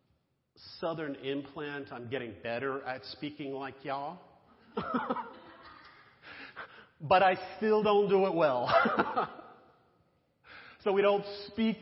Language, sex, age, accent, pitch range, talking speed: English, male, 50-69, American, 135-185 Hz, 100 wpm